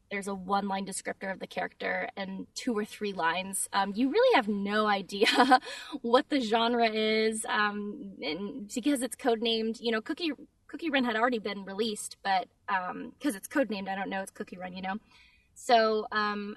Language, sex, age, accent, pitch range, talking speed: English, female, 10-29, American, 210-255 Hz, 190 wpm